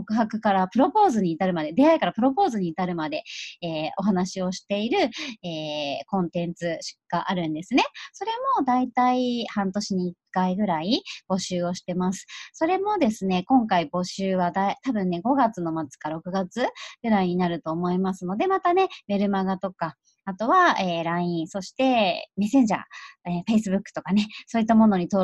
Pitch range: 180-240 Hz